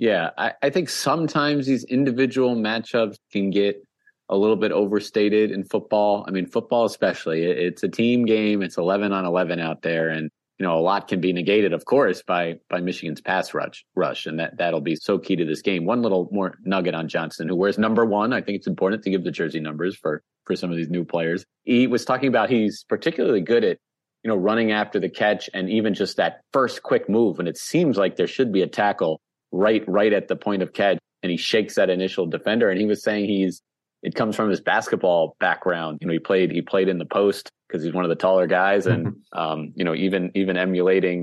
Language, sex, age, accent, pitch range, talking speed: English, male, 30-49, American, 90-110 Hz, 230 wpm